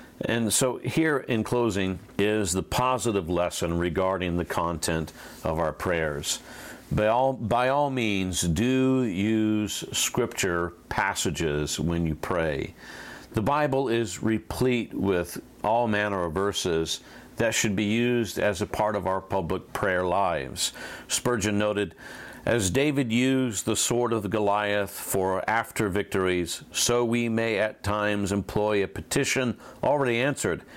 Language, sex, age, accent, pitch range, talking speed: English, male, 50-69, American, 95-115 Hz, 135 wpm